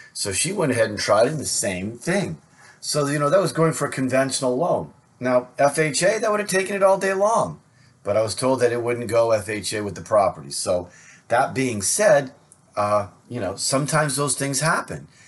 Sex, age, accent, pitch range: male, 40-59, American, 110-145 Hz